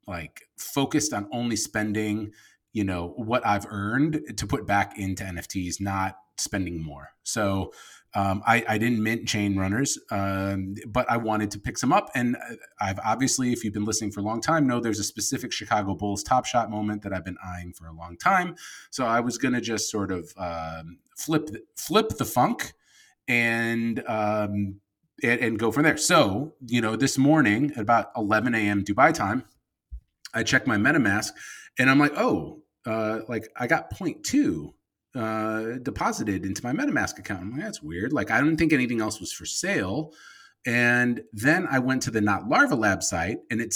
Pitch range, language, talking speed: 100-125 Hz, English, 185 wpm